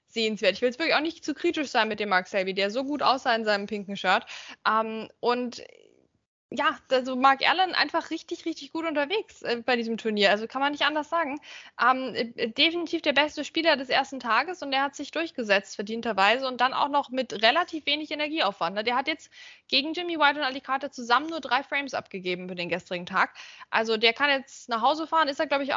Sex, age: female, 20-39